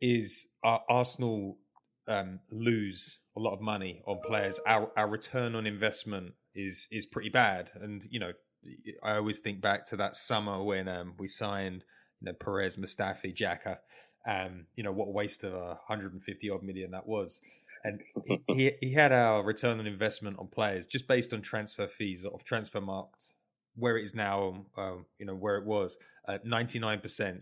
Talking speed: 180 wpm